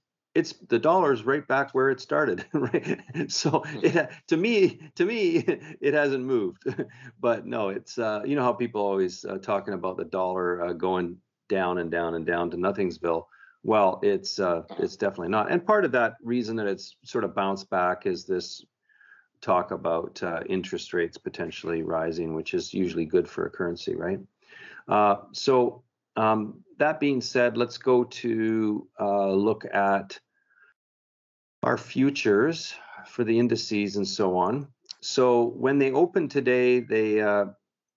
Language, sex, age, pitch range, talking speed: English, male, 50-69, 95-125 Hz, 165 wpm